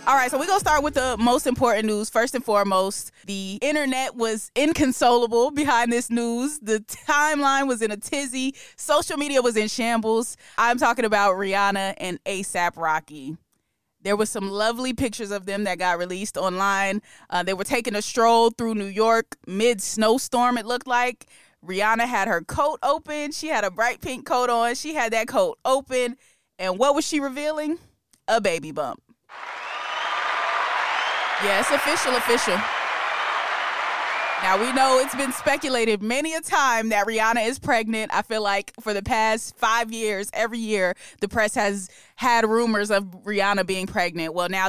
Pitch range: 200-255 Hz